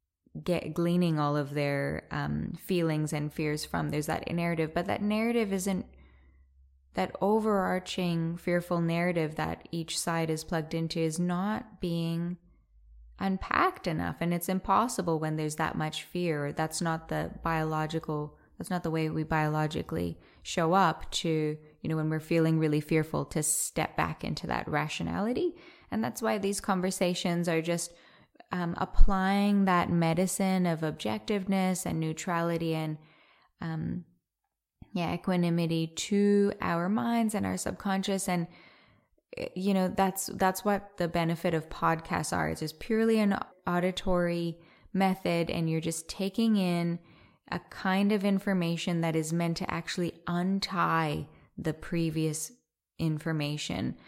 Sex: female